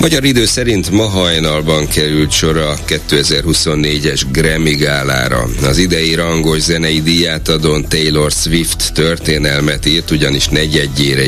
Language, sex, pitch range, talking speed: Hungarian, male, 70-85 Hz, 115 wpm